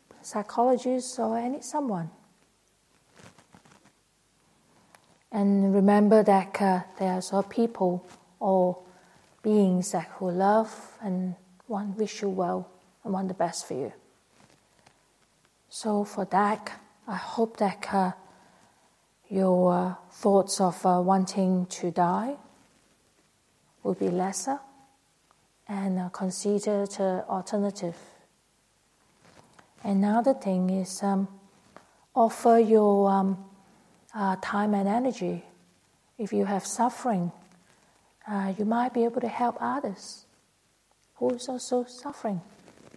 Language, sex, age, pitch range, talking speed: English, female, 40-59, 190-230 Hz, 110 wpm